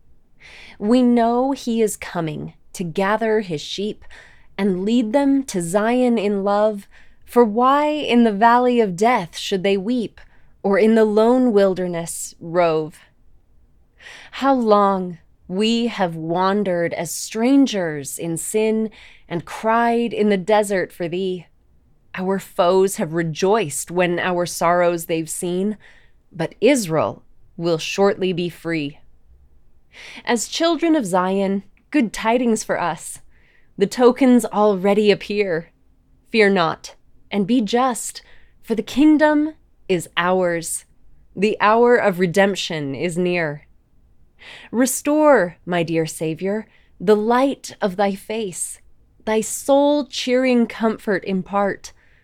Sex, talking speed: female, 120 wpm